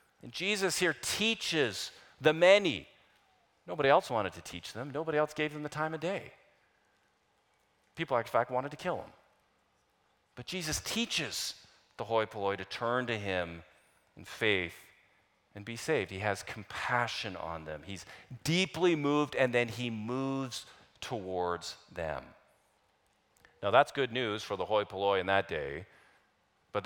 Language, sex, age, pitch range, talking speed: English, male, 40-59, 100-140 Hz, 150 wpm